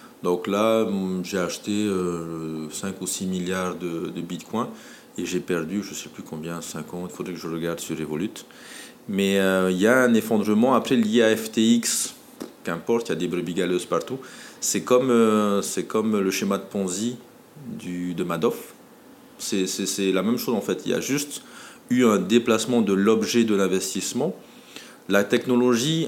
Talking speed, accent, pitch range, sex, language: 180 wpm, French, 90-115 Hz, male, French